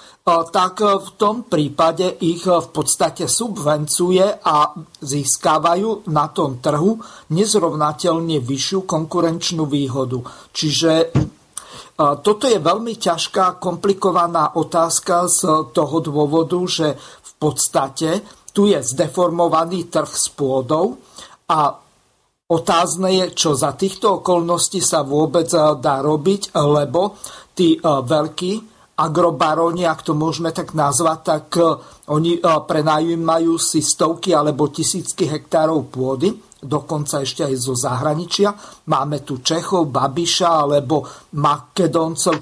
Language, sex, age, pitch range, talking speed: Slovak, male, 50-69, 150-175 Hz, 110 wpm